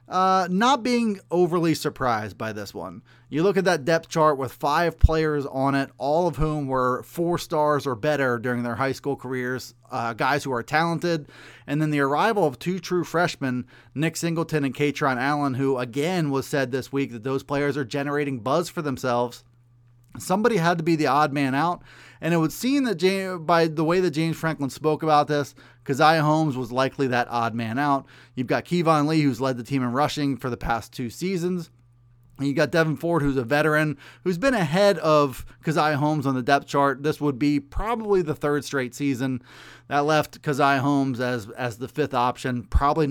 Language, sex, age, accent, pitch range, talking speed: English, male, 30-49, American, 125-155 Hz, 205 wpm